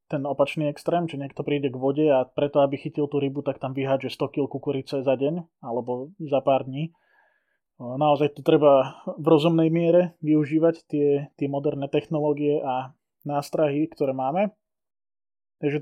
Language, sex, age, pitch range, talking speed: Slovak, male, 20-39, 130-150 Hz, 160 wpm